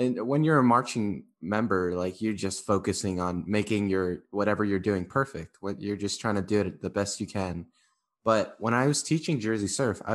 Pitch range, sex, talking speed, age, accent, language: 95-125 Hz, male, 215 wpm, 20-39, American, English